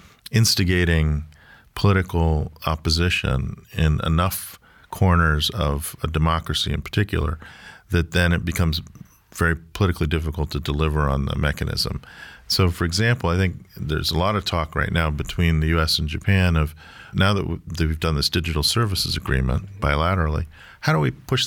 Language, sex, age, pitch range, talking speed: English, male, 40-59, 75-90 Hz, 150 wpm